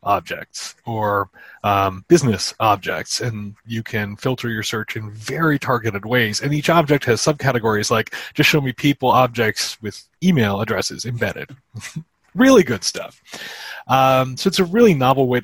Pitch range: 115-145 Hz